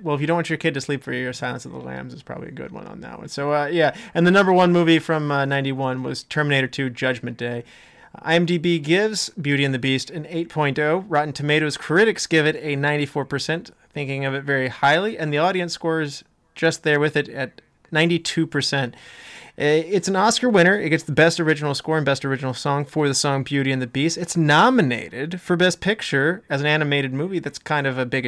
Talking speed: 220 wpm